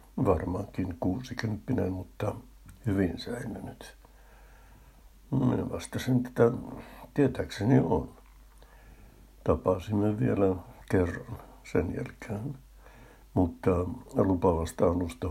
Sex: male